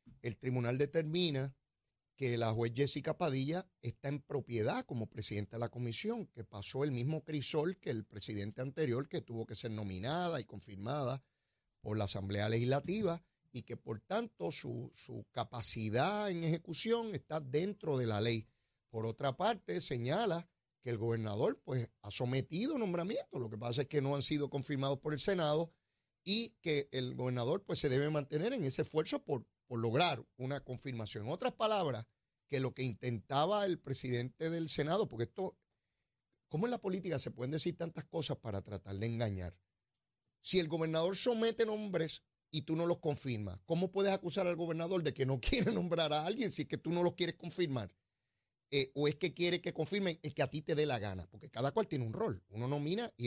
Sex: male